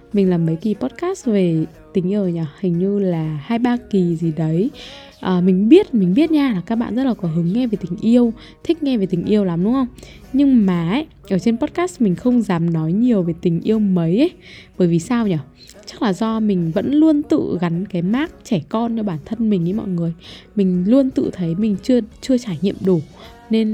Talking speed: 230 wpm